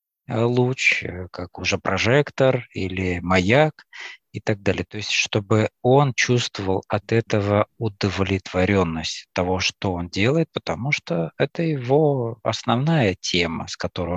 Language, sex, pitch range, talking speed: Russian, male, 90-120 Hz, 125 wpm